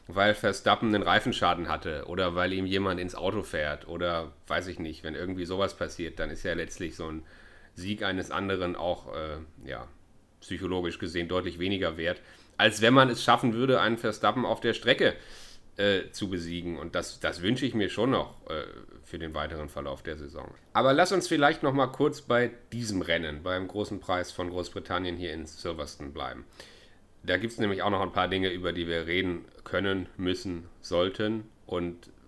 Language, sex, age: German, male, 30-49